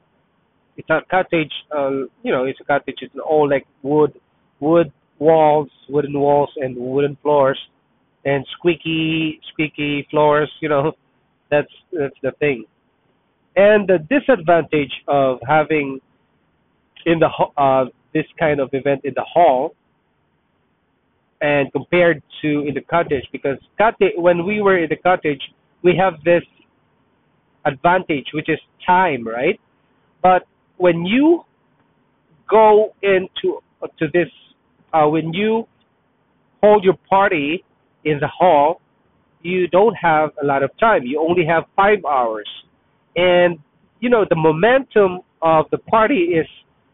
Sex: male